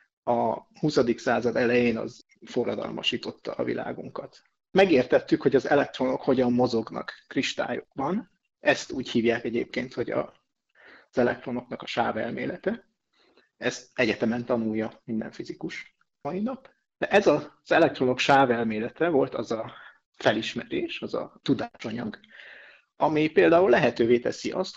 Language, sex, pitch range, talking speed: Hungarian, male, 120-160 Hz, 125 wpm